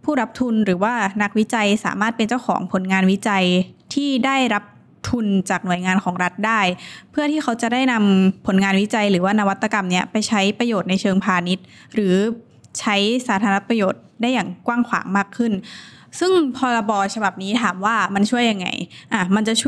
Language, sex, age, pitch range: Thai, female, 20-39, 195-240 Hz